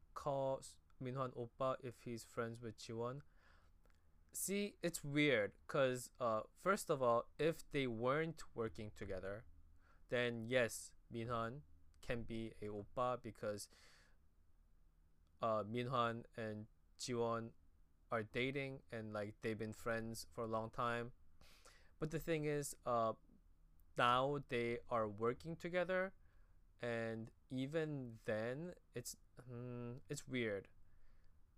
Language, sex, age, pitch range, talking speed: English, male, 20-39, 85-135 Hz, 115 wpm